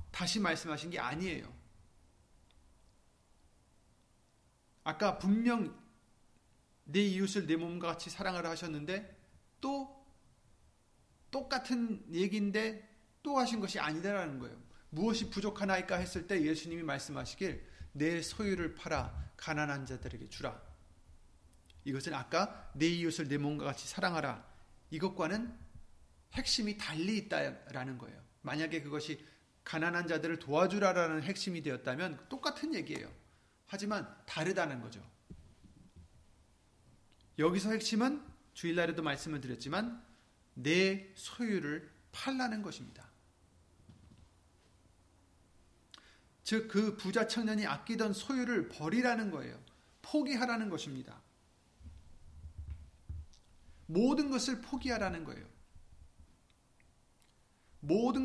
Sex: male